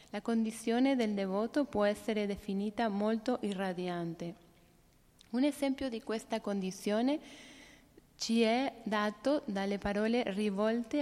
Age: 30-49